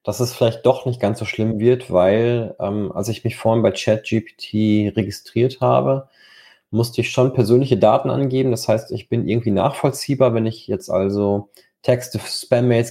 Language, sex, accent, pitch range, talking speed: German, male, German, 110-125 Hz, 170 wpm